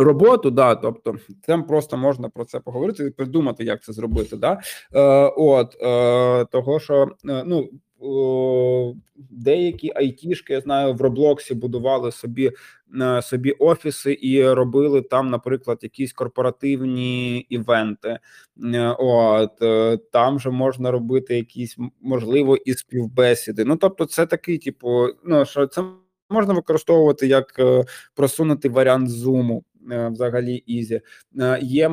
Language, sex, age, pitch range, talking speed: Ukrainian, male, 20-39, 120-145 Hz, 135 wpm